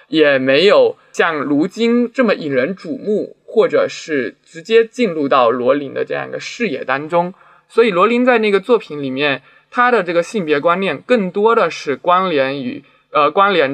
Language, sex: Chinese, male